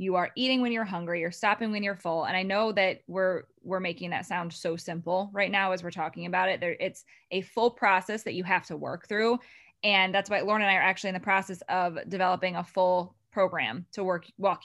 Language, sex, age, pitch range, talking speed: English, female, 20-39, 180-210 Hz, 240 wpm